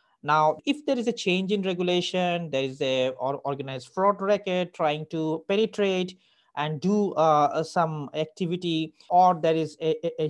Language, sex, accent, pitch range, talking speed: English, male, Indian, 150-190 Hz, 165 wpm